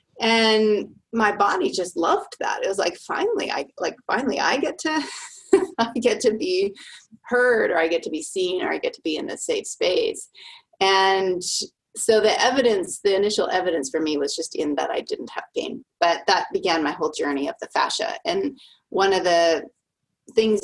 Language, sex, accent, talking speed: English, female, American, 195 wpm